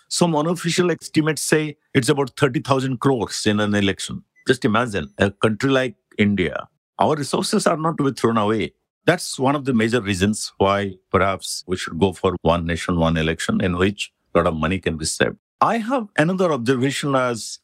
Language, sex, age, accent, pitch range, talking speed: English, male, 50-69, Indian, 100-145 Hz, 185 wpm